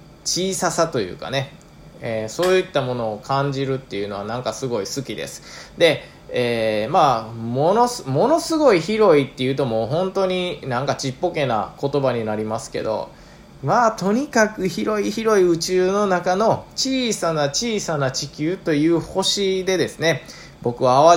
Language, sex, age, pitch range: Japanese, male, 20-39, 125-190 Hz